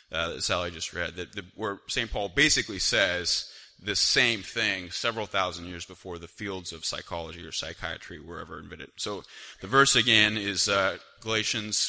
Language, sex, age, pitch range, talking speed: English, male, 30-49, 85-110 Hz, 170 wpm